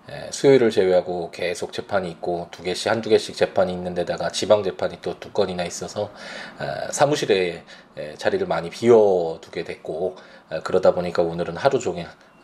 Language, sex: Korean, male